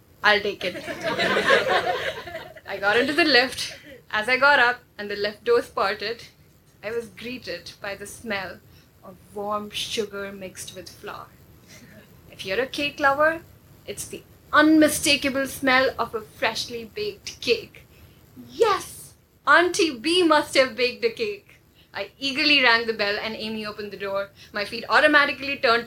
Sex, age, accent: female, 10-29, Indian